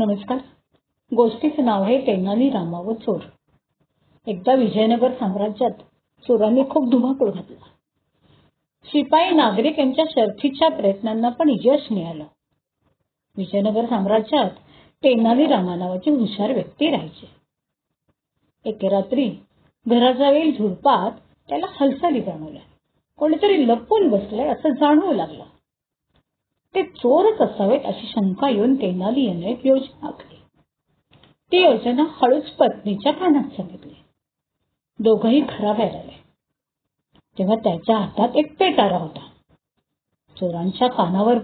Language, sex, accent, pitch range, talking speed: Marathi, female, native, 215-290 Hz, 100 wpm